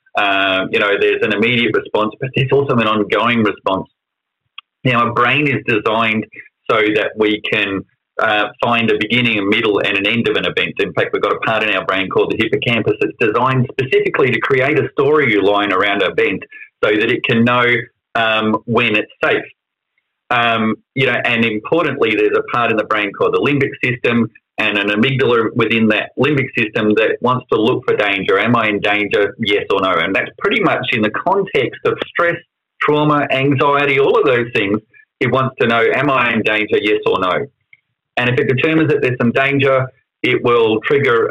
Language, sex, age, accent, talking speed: English, male, 30-49, Australian, 200 wpm